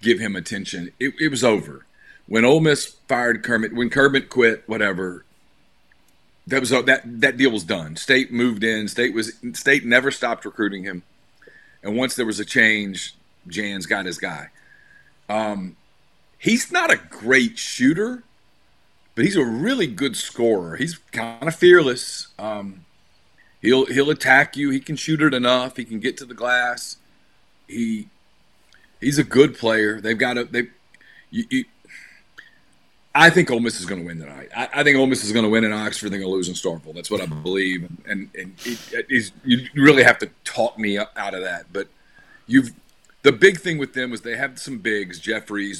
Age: 40-59